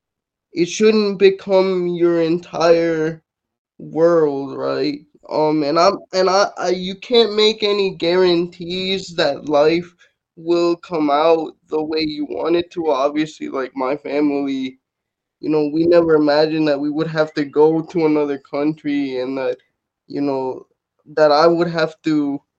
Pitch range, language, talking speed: 150-180 Hz, Spanish, 150 wpm